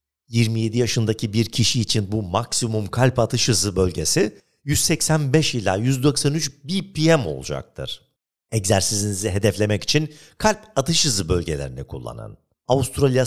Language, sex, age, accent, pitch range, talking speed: Turkish, male, 50-69, native, 115-145 Hz, 115 wpm